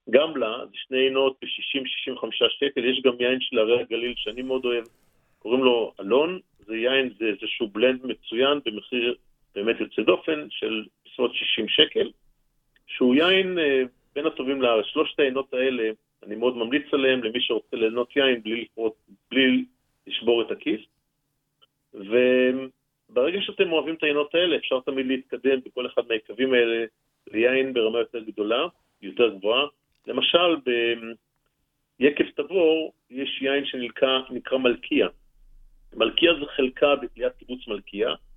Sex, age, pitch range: male, 50-69, 125-150 Hz